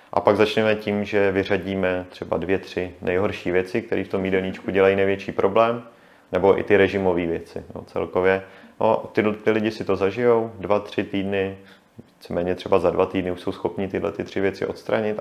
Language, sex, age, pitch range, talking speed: Czech, male, 30-49, 95-105 Hz, 185 wpm